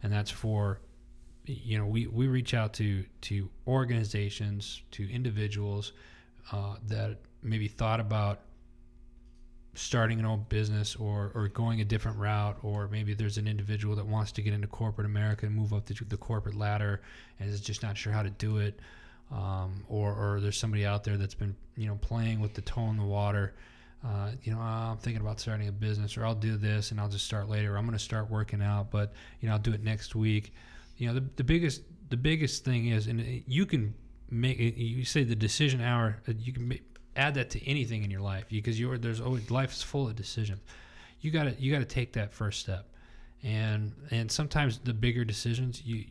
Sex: male